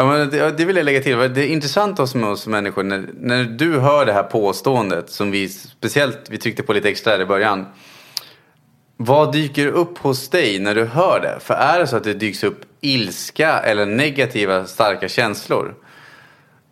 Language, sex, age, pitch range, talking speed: English, male, 20-39, 115-145 Hz, 170 wpm